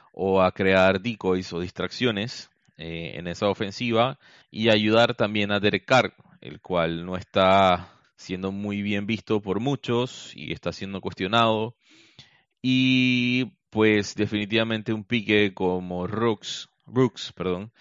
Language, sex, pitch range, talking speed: Spanish, male, 95-120 Hz, 125 wpm